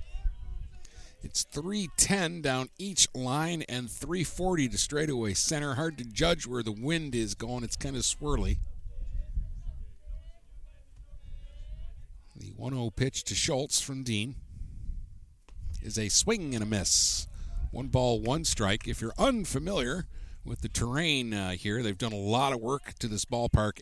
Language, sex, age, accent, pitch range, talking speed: English, male, 50-69, American, 85-120 Hz, 140 wpm